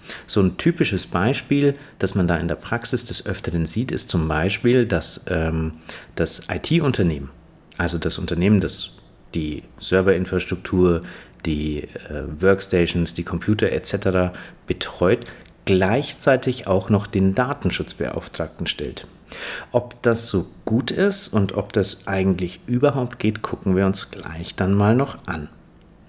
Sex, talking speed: male, 135 wpm